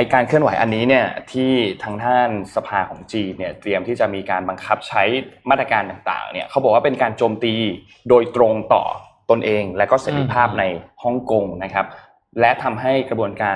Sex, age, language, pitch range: male, 20-39, Thai, 100-125 Hz